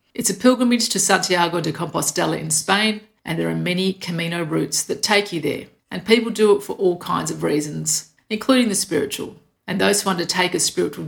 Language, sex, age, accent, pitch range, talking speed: English, female, 50-69, Australian, 175-215 Hz, 200 wpm